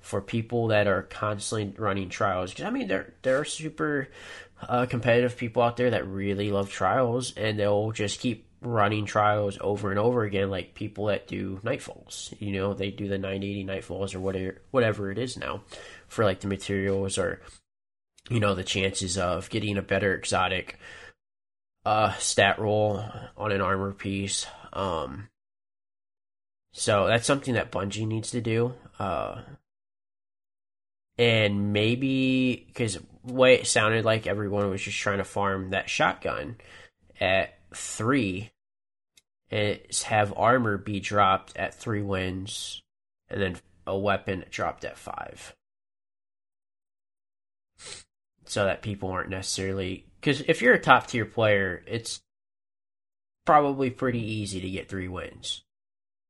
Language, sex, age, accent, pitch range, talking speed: English, male, 20-39, American, 95-110 Hz, 140 wpm